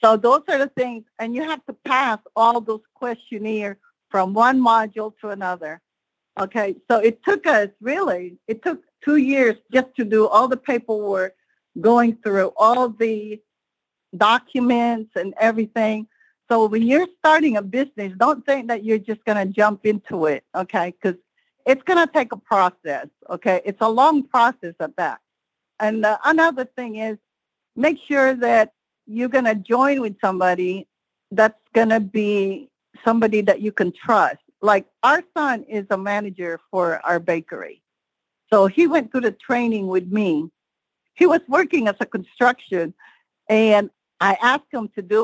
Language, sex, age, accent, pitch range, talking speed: English, female, 50-69, American, 200-255 Hz, 165 wpm